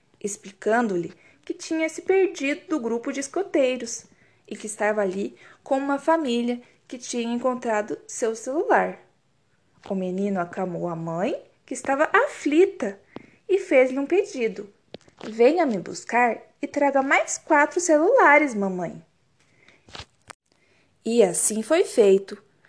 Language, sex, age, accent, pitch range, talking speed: Portuguese, female, 20-39, Brazilian, 205-295 Hz, 120 wpm